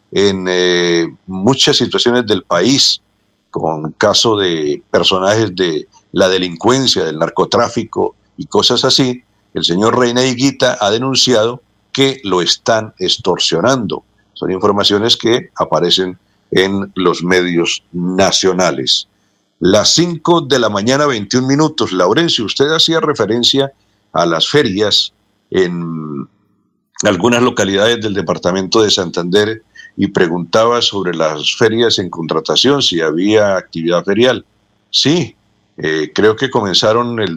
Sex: male